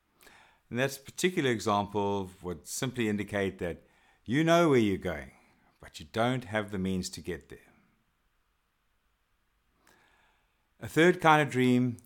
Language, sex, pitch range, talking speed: English, male, 95-125 Hz, 135 wpm